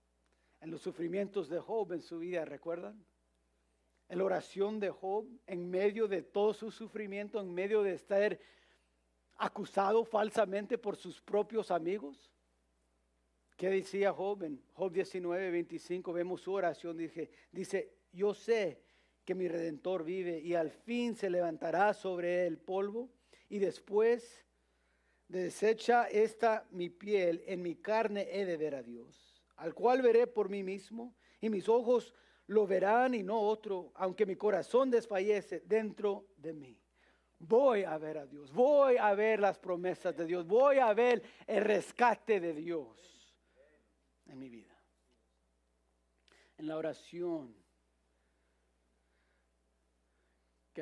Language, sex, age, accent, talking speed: English, male, 50-69, Mexican, 140 wpm